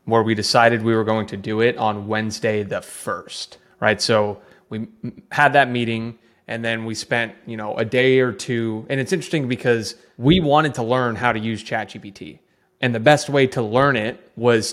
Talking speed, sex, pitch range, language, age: 200 wpm, male, 110-130 Hz, English, 20-39